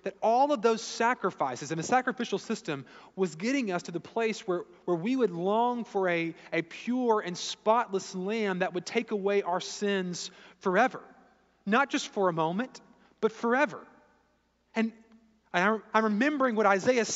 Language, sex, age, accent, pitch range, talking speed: English, male, 30-49, American, 195-255 Hz, 165 wpm